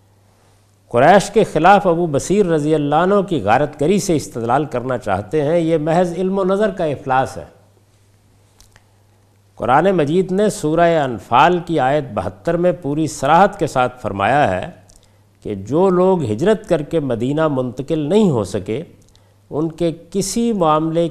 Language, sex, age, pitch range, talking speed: Urdu, male, 50-69, 100-155 Hz, 155 wpm